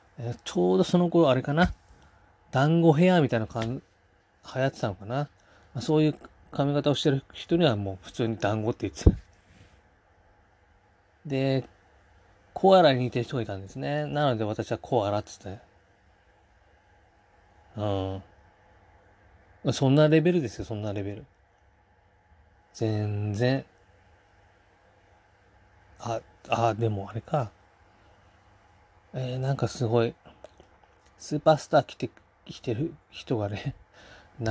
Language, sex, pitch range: Japanese, male, 95-125 Hz